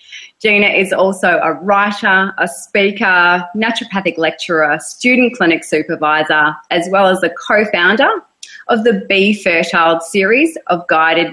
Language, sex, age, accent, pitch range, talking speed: English, female, 30-49, Australian, 165-215 Hz, 125 wpm